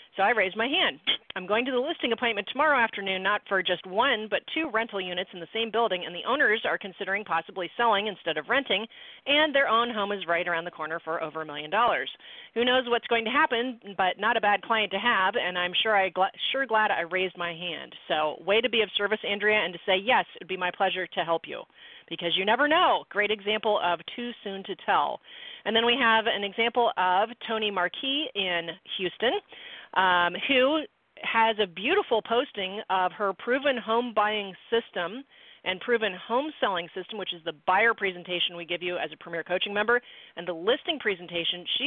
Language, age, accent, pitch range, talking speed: English, 40-59, American, 180-230 Hz, 215 wpm